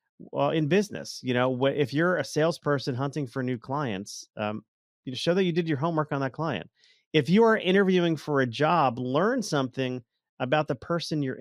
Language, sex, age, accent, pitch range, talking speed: English, male, 40-59, American, 125-180 Hz, 200 wpm